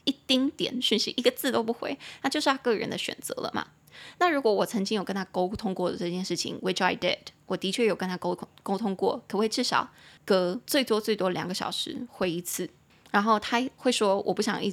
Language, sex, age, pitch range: Chinese, female, 20-39, 190-235 Hz